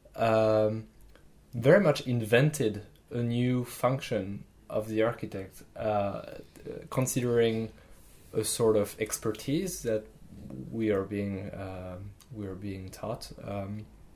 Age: 20-39